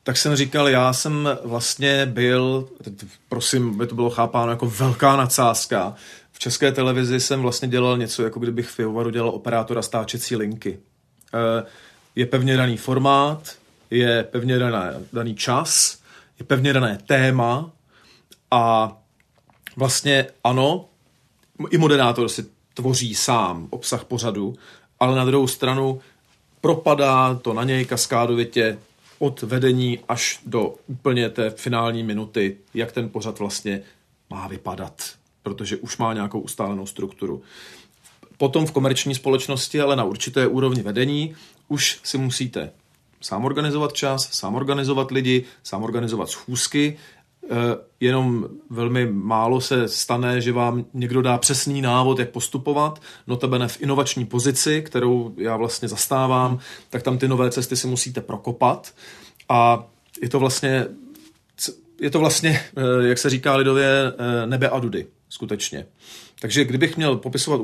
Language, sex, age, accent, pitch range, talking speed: Czech, male, 40-59, native, 120-135 Hz, 135 wpm